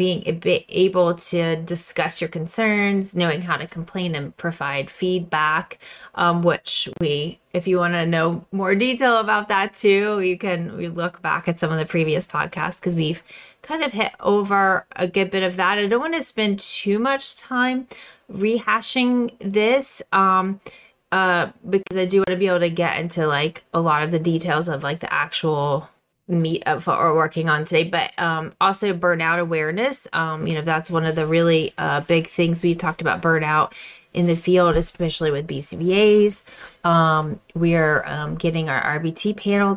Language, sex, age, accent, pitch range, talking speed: English, female, 20-39, American, 160-195 Hz, 185 wpm